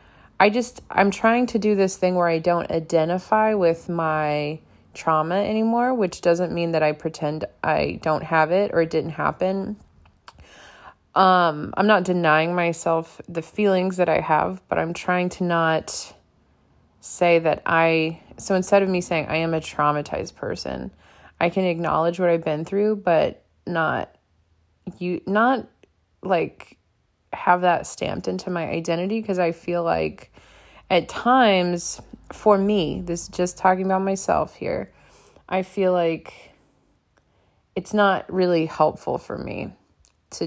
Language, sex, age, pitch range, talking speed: English, female, 20-39, 160-190 Hz, 150 wpm